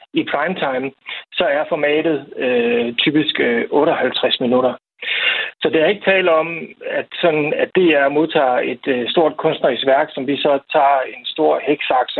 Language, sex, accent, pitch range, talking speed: Danish, male, native, 135-175 Hz, 165 wpm